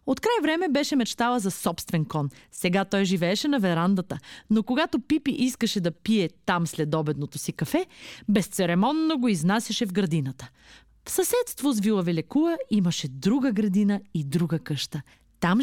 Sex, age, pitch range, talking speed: female, 30-49, 170-265 Hz, 160 wpm